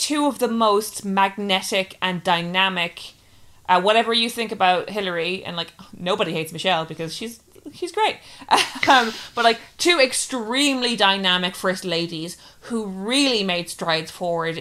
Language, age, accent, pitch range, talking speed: English, 20-39, Irish, 180-235 Hz, 145 wpm